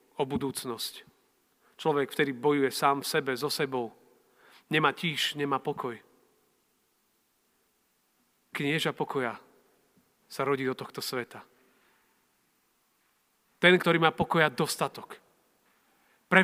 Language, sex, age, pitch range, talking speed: Slovak, male, 40-59, 155-195 Hz, 100 wpm